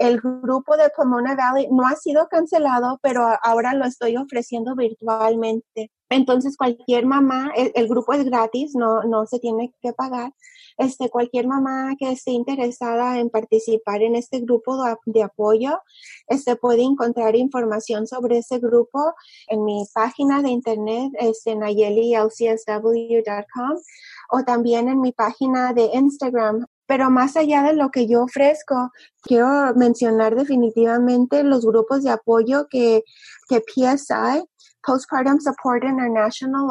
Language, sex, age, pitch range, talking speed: English, female, 30-49, 230-275 Hz, 130 wpm